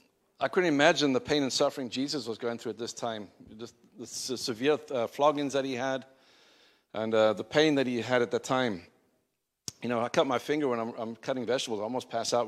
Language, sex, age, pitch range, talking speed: English, male, 50-69, 120-145 Hz, 225 wpm